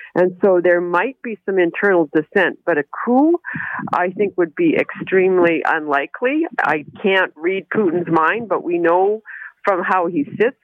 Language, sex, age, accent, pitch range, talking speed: English, female, 50-69, American, 170-210 Hz, 165 wpm